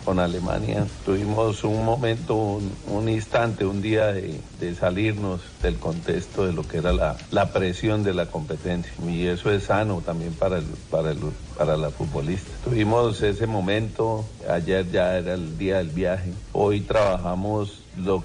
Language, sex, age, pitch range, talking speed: Spanish, male, 50-69, 90-110 Hz, 165 wpm